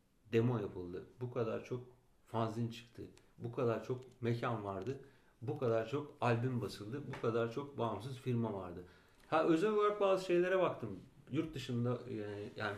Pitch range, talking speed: 115-150 Hz, 155 wpm